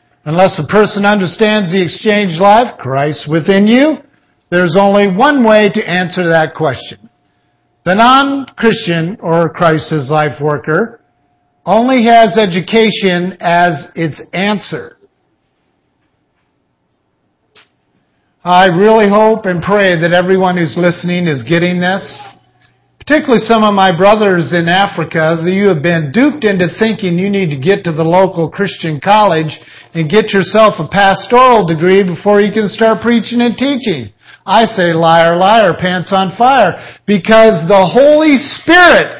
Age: 50-69